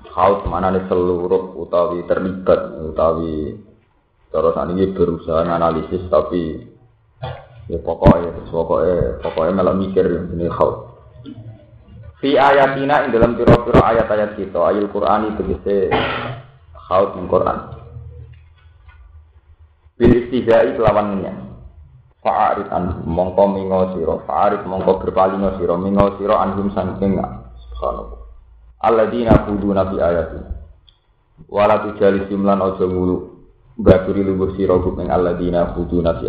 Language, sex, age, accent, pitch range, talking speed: Indonesian, male, 30-49, native, 85-105 Hz, 115 wpm